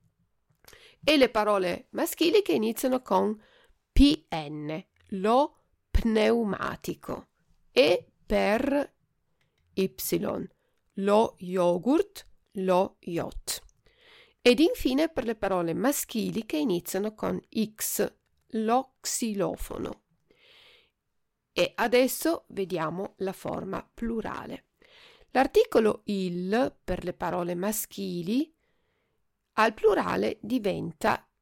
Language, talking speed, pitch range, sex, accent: Italian, 85 wpm, 185-280 Hz, female, native